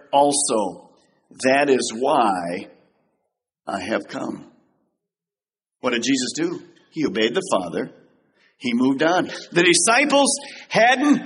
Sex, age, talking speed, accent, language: male, 50-69, 110 wpm, American, English